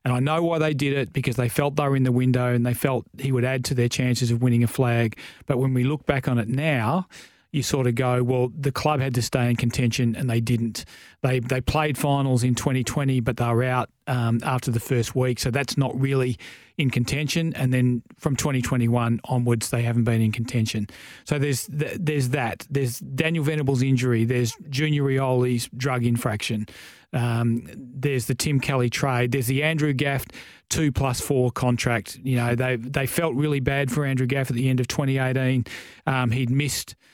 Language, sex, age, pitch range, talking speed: English, male, 30-49, 120-140 Hz, 205 wpm